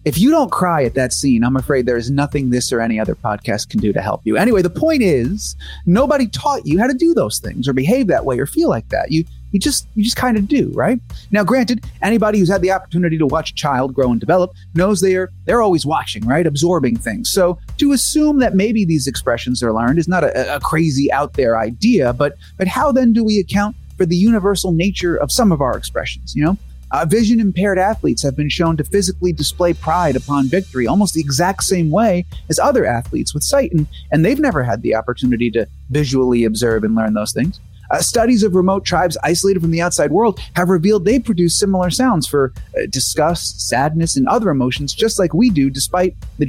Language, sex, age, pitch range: English, male, 30-49, 130-205 Hz